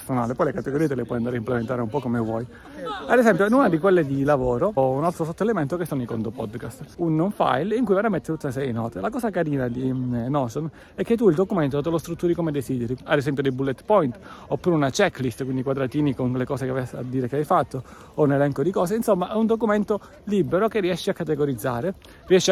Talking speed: 235 wpm